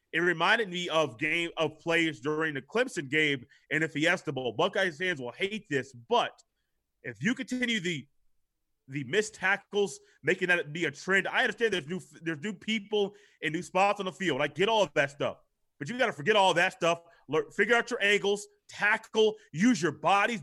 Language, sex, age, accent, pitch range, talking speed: English, male, 30-49, American, 155-215 Hz, 205 wpm